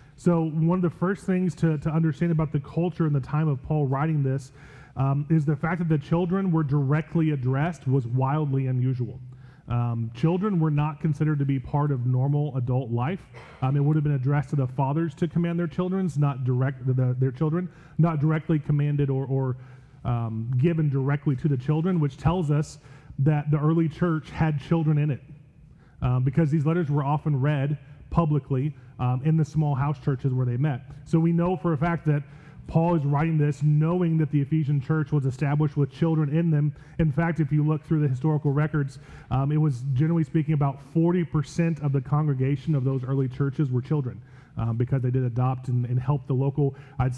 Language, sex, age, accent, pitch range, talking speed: English, male, 30-49, American, 135-160 Hz, 200 wpm